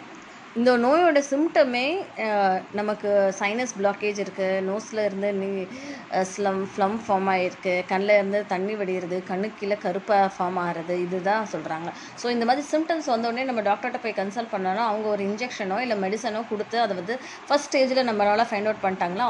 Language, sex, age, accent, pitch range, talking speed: Tamil, female, 20-39, native, 195-240 Hz, 145 wpm